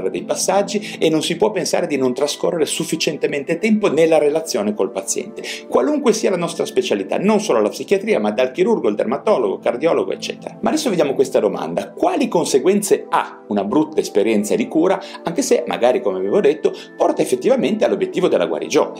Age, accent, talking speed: 40-59, native, 175 wpm